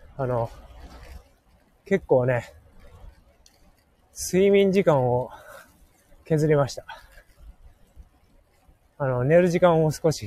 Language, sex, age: Japanese, male, 20-39